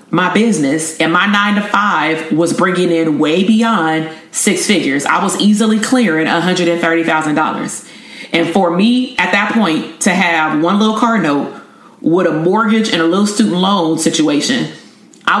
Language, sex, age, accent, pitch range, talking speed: English, female, 30-49, American, 165-205 Hz, 160 wpm